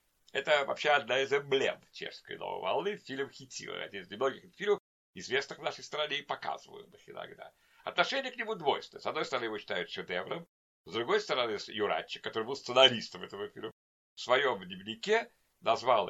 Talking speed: 170 wpm